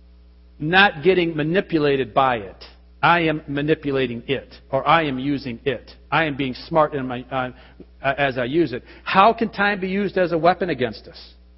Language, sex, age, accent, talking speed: English, male, 50-69, American, 180 wpm